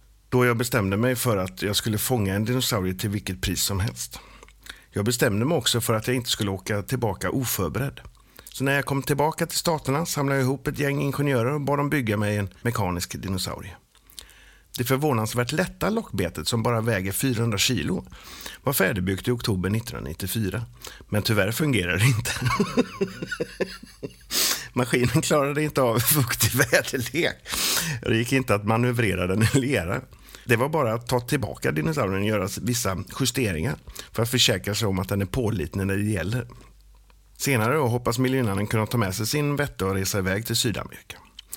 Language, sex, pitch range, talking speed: Swedish, male, 100-135 Hz, 175 wpm